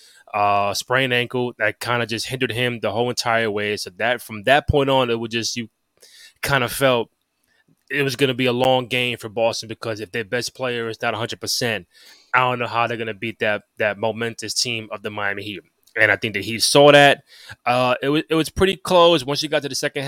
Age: 20-39